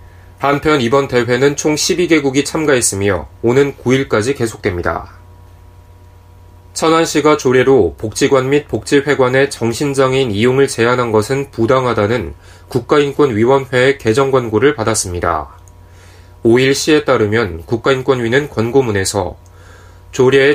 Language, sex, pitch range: Korean, male, 95-140 Hz